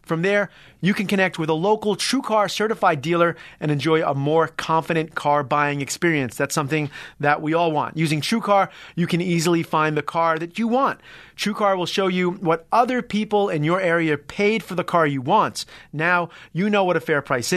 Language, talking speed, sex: English, 200 wpm, male